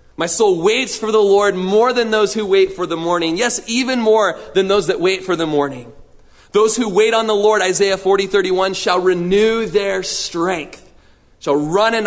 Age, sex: 30-49, male